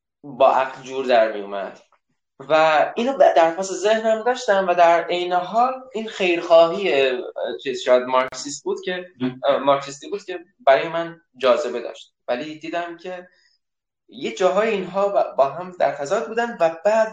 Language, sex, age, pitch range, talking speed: Persian, male, 10-29, 135-210 Hz, 145 wpm